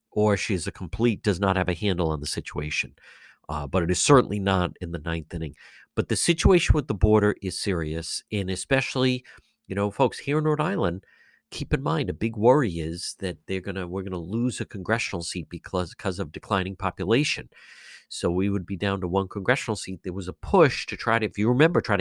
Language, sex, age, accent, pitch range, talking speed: English, male, 50-69, American, 95-125 Hz, 220 wpm